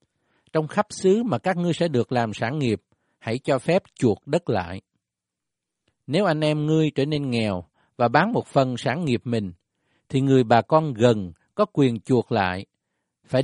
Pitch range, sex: 105-150 Hz, male